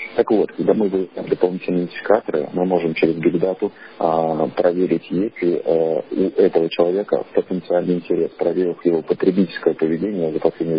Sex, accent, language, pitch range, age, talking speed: male, native, Russian, 80-95 Hz, 40-59, 150 wpm